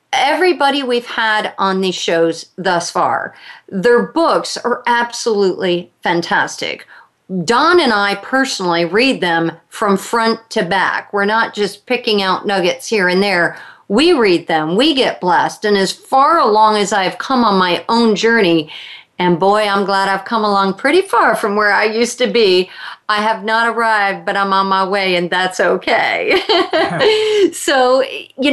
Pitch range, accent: 190-240 Hz, American